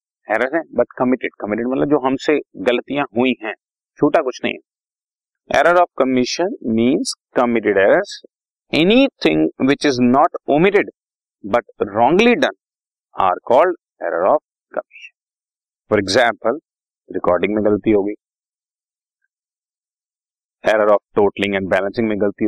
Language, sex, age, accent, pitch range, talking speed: Hindi, male, 30-49, native, 105-160 Hz, 55 wpm